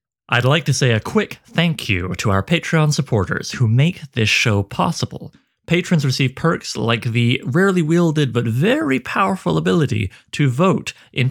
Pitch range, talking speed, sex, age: 120-165 Hz, 165 wpm, male, 30-49